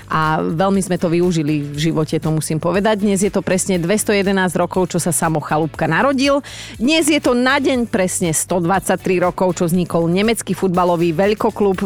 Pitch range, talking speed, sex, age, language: 170-215 Hz, 170 wpm, female, 30-49, Slovak